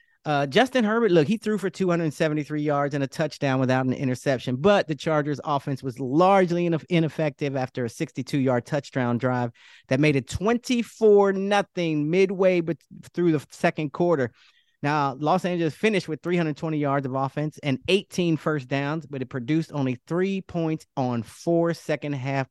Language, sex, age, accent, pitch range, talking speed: English, male, 30-49, American, 130-165 Hz, 155 wpm